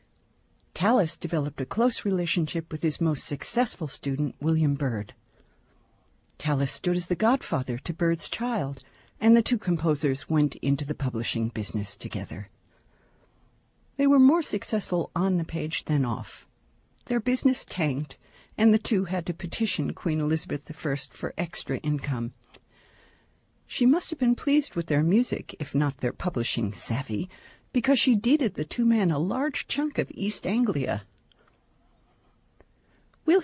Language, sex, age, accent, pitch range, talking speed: English, female, 60-79, American, 135-195 Hz, 145 wpm